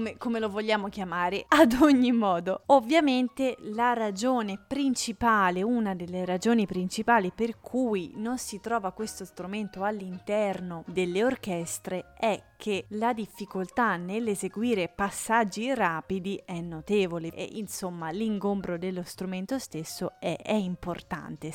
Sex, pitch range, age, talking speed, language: female, 185-245 Hz, 20-39, 125 wpm, Italian